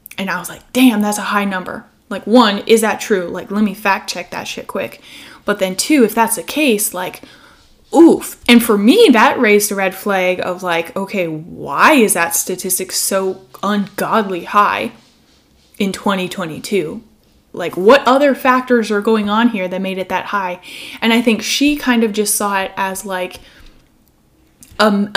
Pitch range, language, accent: 190-235 Hz, English, American